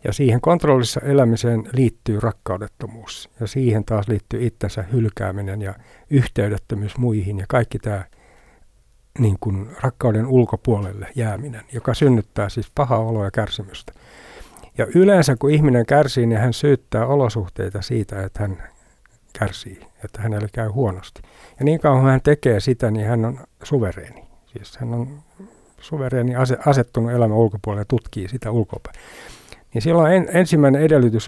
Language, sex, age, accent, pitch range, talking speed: Finnish, male, 60-79, native, 105-130 Hz, 140 wpm